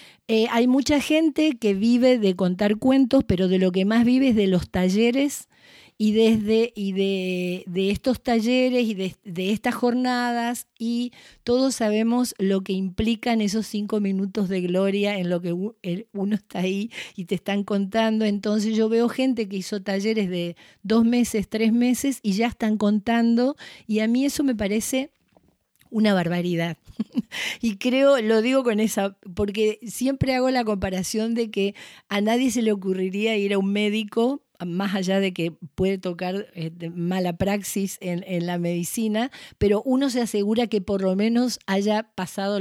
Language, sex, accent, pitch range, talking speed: Spanish, female, Argentinian, 195-235 Hz, 170 wpm